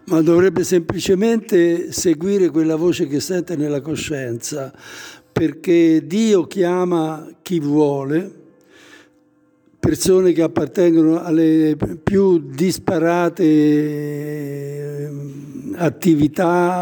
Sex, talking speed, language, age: male, 80 wpm, Italian, 60-79